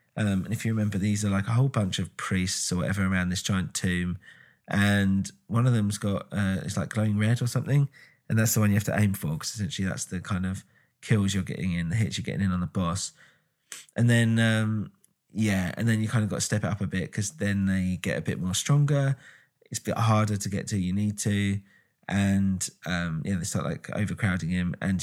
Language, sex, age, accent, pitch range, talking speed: English, male, 20-39, British, 95-110 Hz, 250 wpm